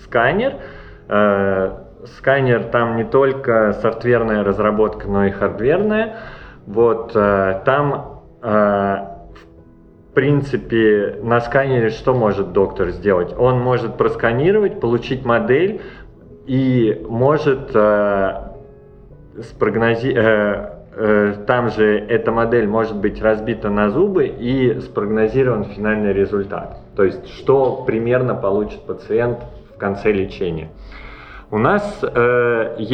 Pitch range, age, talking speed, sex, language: 105-125 Hz, 20-39, 95 wpm, male, Russian